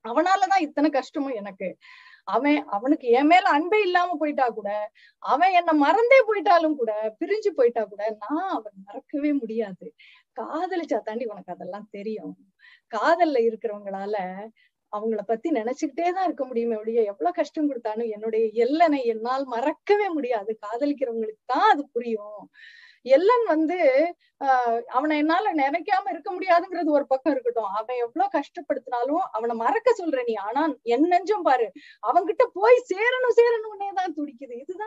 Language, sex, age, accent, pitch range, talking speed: Tamil, female, 20-39, native, 235-330 Hz, 105 wpm